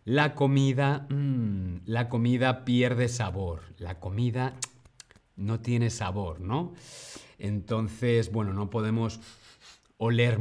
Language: Spanish